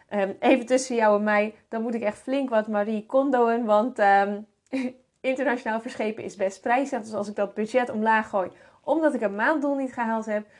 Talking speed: 190 wpm